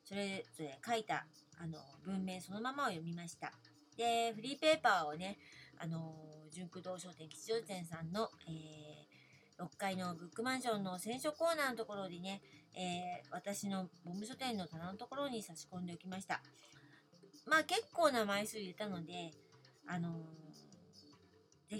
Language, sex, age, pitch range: Japanese, female, 40-59, 165-235 Hz